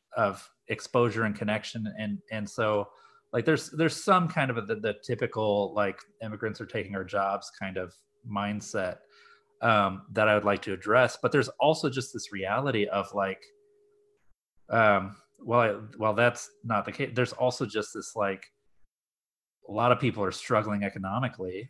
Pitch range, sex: 100-135 Hz, male